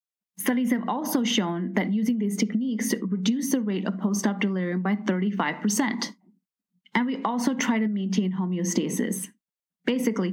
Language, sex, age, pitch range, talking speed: English, female, 20-39, 195-230 Hz, 140 wpm